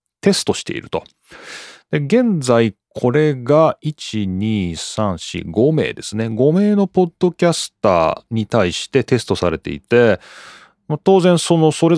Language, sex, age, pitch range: Japanese, male, 30-49, 105-160 Hz